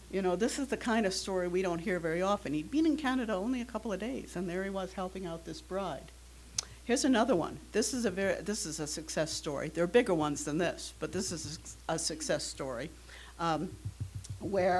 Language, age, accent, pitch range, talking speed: English, 60-79, American, 155-190 Hz, 230 wpm